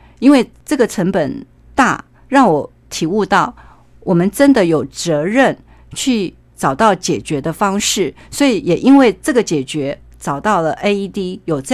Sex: female